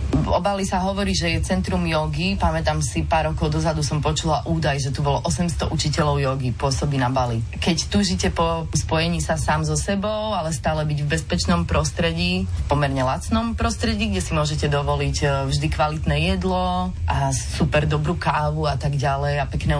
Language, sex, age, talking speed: Slovak, female, 30-49, 185 wpm